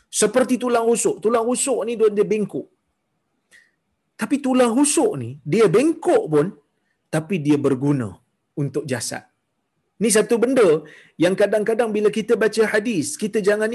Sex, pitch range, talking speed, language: male, 140-230 Hz, 135 wpm, Malayalam